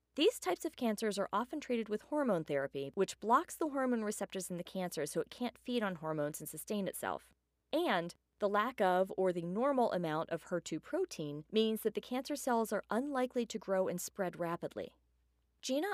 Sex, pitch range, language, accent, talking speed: female, 165-245 Hz, English, American, 190 wpm